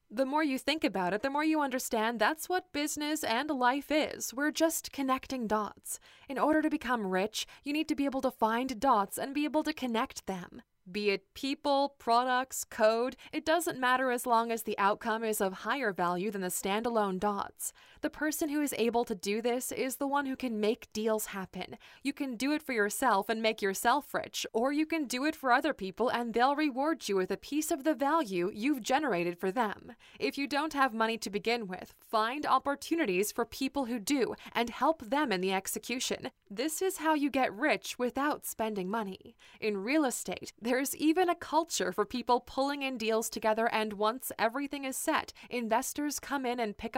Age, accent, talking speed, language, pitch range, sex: 20-39, American, 205 wpm, English, 210-280 Hz, female